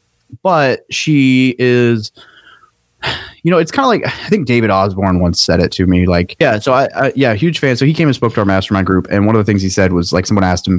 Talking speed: 260 wpm